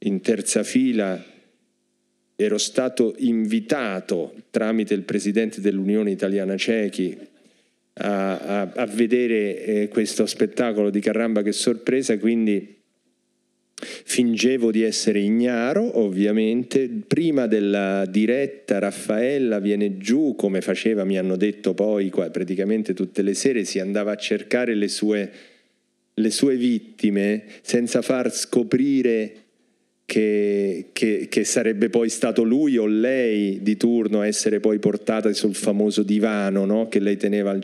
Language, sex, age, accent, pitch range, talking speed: Italian, male, 40-59, native, 100-115 Hz, 125 wpm